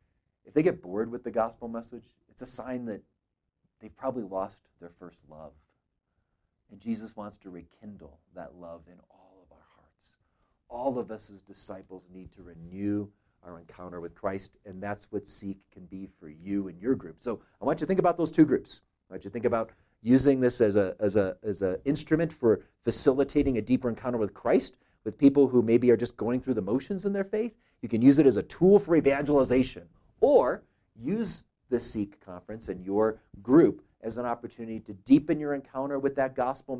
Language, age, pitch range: English, 40-59, 100-130 Hz